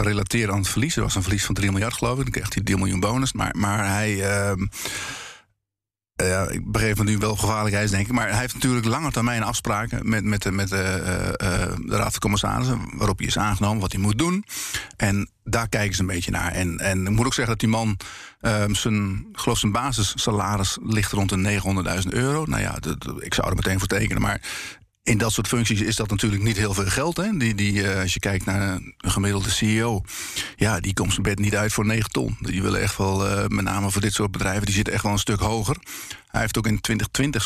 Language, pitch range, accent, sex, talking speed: Dutch, 100-115 Hz, Dutch, male, 235 wpm